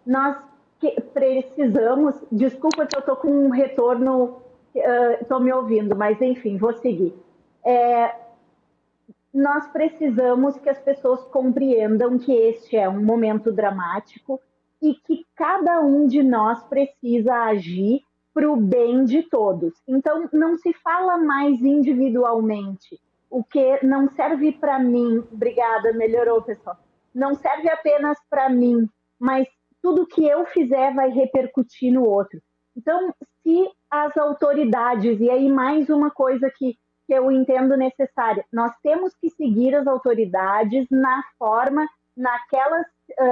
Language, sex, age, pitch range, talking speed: Portuguese, female, 30-49, 235-285 Hz, 130 wpm